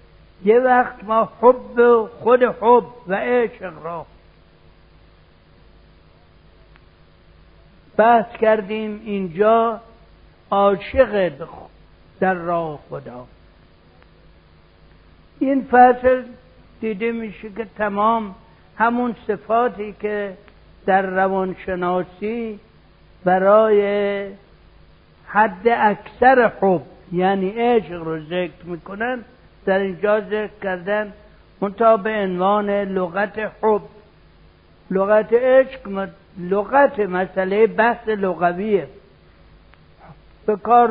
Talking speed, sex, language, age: 75 wpm, male, Persian, 60-79